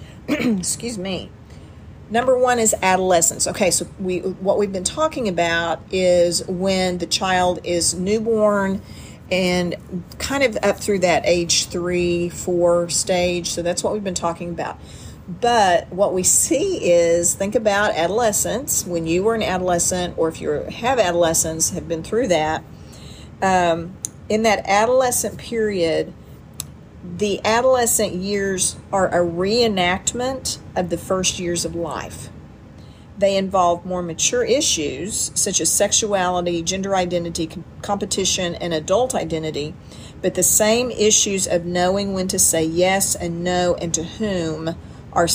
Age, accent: 40-59, American